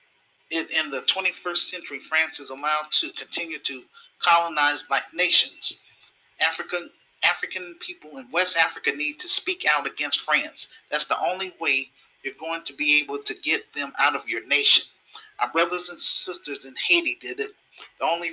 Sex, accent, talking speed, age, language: male, American, 165 wpm, 40-59, English